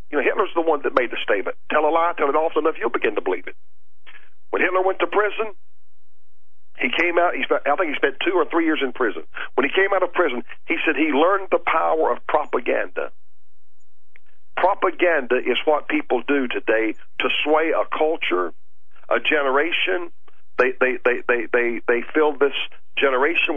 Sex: male